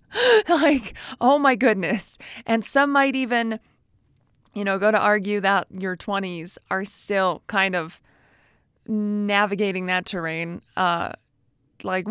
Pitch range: 190-245 Hz